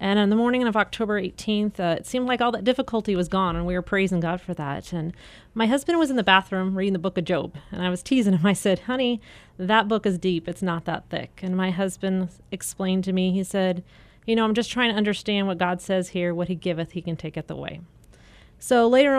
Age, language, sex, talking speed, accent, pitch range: 30-49, English, female, 250 wpm, American, 180-215 Hz